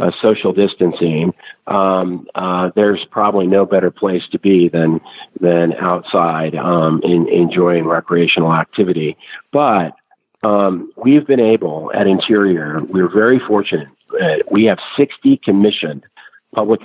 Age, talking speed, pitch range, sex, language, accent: 50-69, 130 wpm, 95-110 Hz, male, English, American